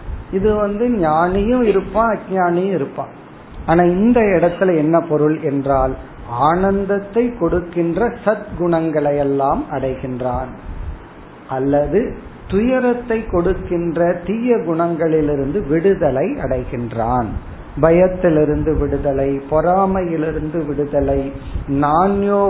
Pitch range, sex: 150-190 Hz, male